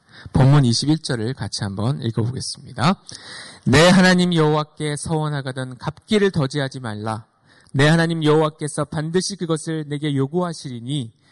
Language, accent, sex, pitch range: Korean, native, male, 135-185 Hz